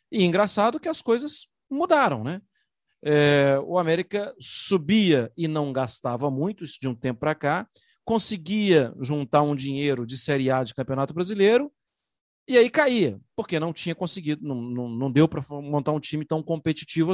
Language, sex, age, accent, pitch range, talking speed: Portuguese, male, 40-59, Brazilian, 145-235 Hz, 165 wpm